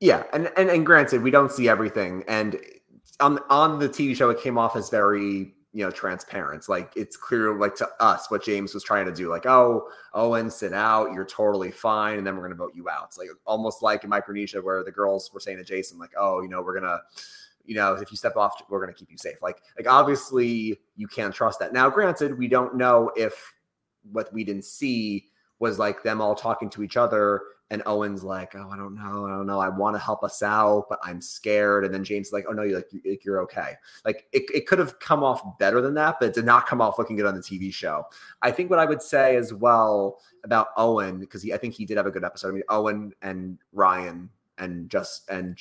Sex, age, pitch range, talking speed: male, 30-49, 100-120 Hz, 245 wpm